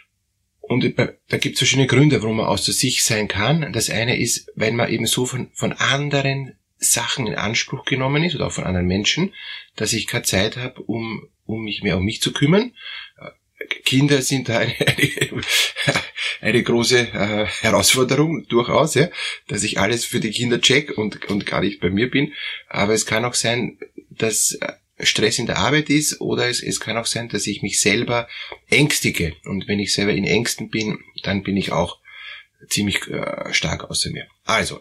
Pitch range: 105-135 Hz